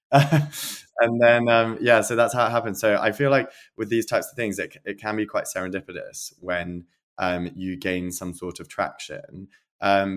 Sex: male